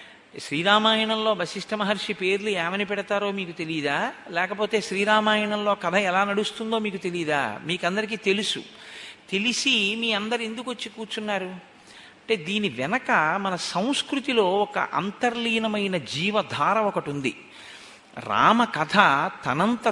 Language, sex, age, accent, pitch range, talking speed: Telugu, male, 50-69, native, 175-215 Hz, 105 wpm